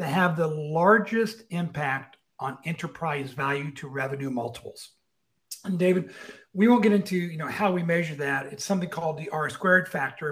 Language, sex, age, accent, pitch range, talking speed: English, male, 60-79, American, 150-190 Hz, 175 wpm